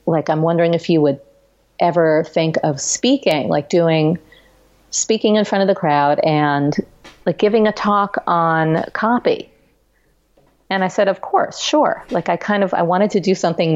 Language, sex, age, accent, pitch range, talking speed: English, female, 40-59, American, 155-185 Hz, 175 wpm